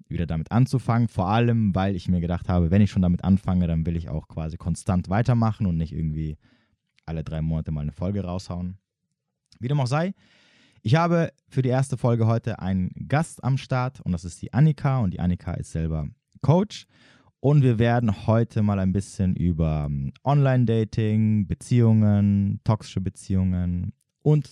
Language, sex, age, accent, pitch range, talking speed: German, male, 20-39, German, 95-135 Hz, 175 wpm